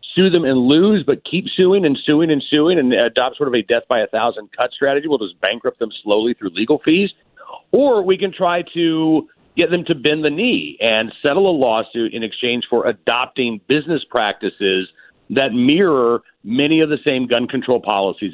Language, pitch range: English, 120-170 Hz